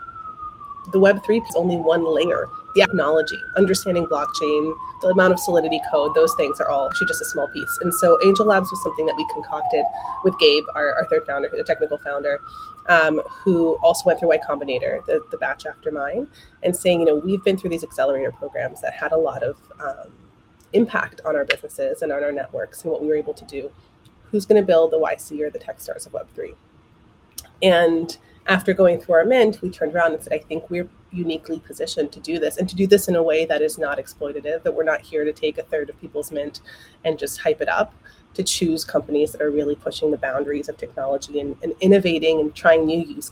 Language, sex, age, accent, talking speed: English, female, 30-49, American, 225 wpm